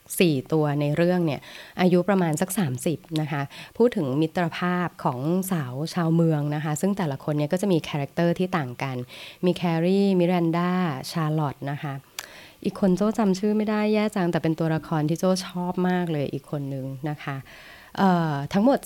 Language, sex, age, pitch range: Thai, female, 20-39, 145-185 Hz